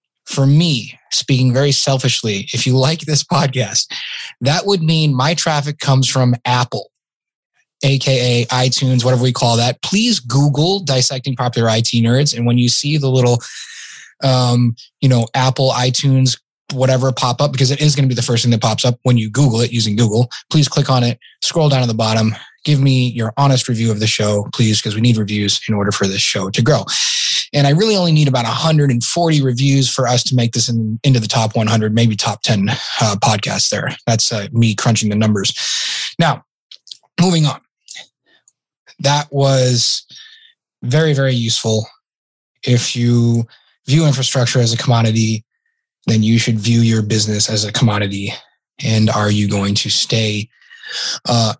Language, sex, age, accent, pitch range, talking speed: English, male, 20-39, American, 115-140 Hz, 175 wpm